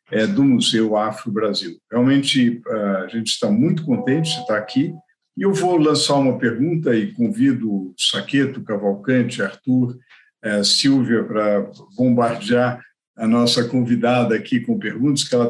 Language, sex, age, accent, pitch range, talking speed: Portuguese, male, 50-69, Brazilian, 115-160 Hz, 135 wpm